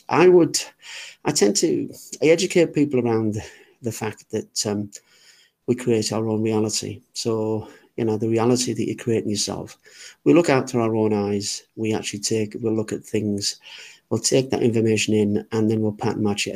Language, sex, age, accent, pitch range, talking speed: English, male, 40-59, British, 105-120 Hz, 185 wpm